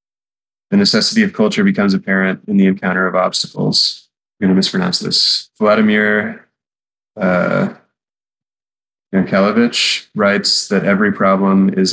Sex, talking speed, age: male, 120 wpm, 20-39